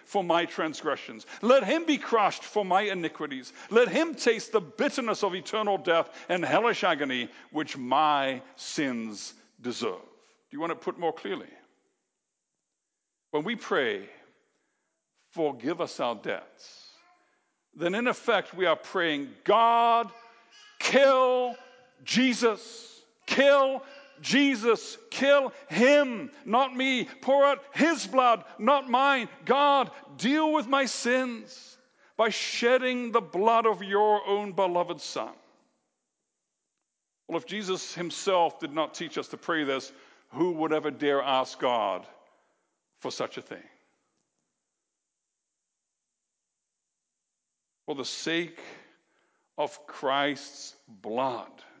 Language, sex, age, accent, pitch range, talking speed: English, male, 60-79, American, 170-270 Hz, 115 wpm